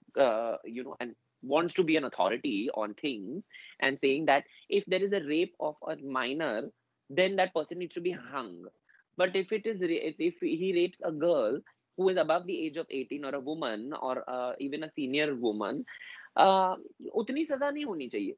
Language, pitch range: English, 150-215 Hz